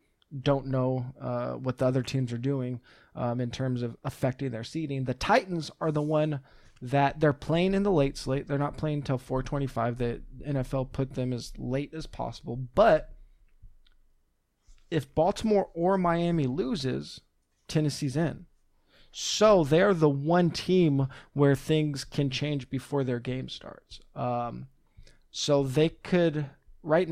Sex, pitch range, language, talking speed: male, 130-155 Hz, English, 150 wpm